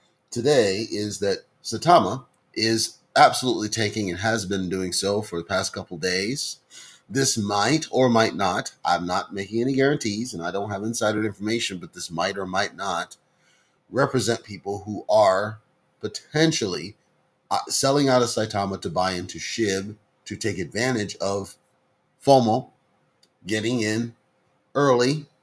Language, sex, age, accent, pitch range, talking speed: English, male, 30-49, American, 100-130 Hz, 140 wpm